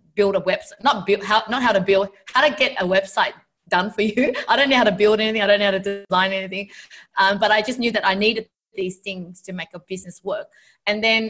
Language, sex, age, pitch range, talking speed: English, female, 20-39, 190-230 Hz, 255 wpm